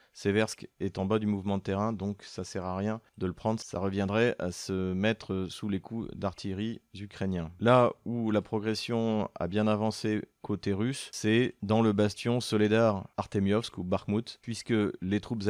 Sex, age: male, 30-49